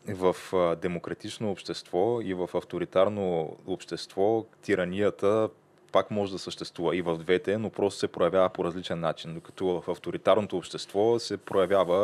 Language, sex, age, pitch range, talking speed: Bulgarian, male, 20-39, 90-100 Hz, 140 wpm